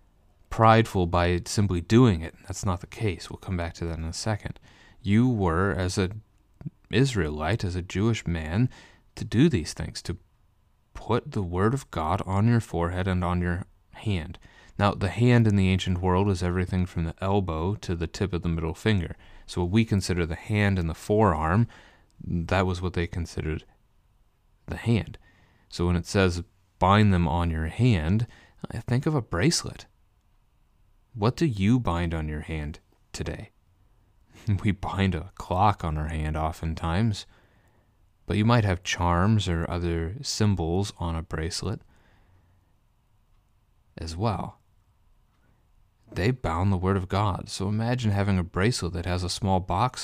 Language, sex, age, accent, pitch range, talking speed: English, male, 30-49, American, 85-105 Hz, 165 wpm